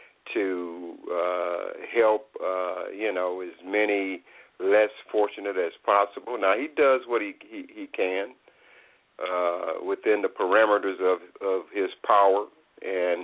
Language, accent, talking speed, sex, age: English, American, 130 wpm, male, 50-69